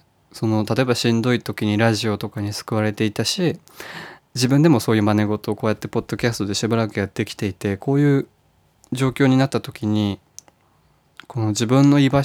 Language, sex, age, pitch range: Japanese, male, 20-39, 105-125 Hz